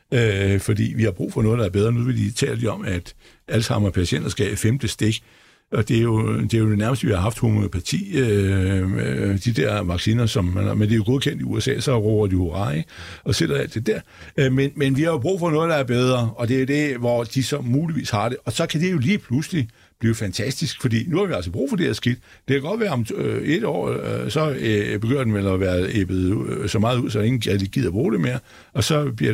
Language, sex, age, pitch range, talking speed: Danish, male, 60-79, 100-130 Hz, 265 wpm